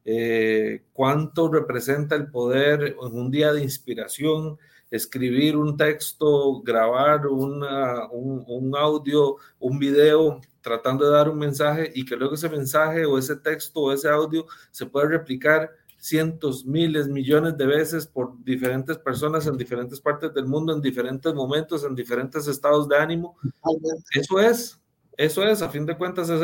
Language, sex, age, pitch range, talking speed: Spanish, male, 40-59, 130-155 Hz, 155 wpm